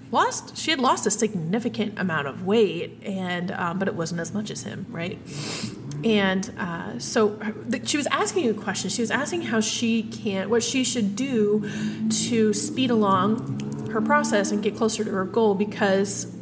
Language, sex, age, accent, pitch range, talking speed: English, female, 30-49, American, 200-235 Hz, 180 wpm